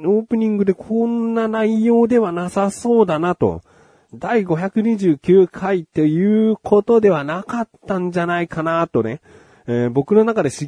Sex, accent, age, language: male, native, 30-49, Japanese